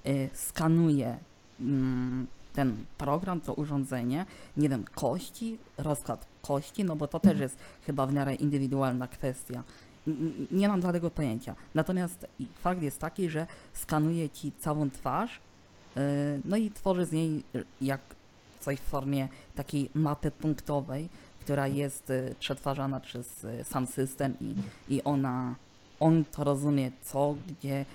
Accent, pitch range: native, 130-155 Hz